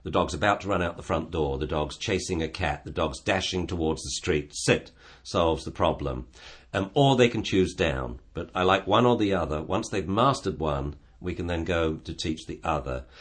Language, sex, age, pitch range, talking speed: English, male, 50-69, 75-100 Hz, 225 wpm